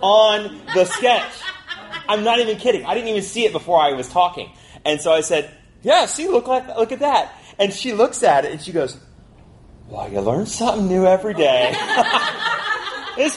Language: English